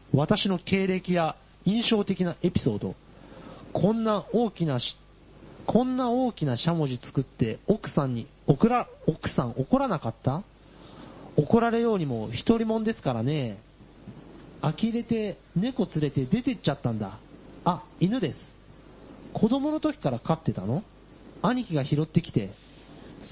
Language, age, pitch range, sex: Japanese, 40-59, 135-200 Hz, male